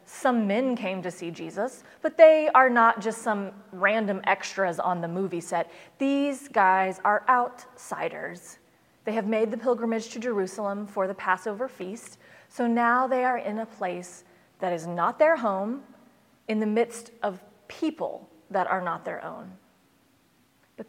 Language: English